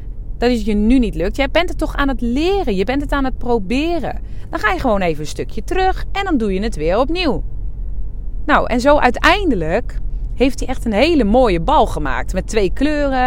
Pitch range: 170-255 Hz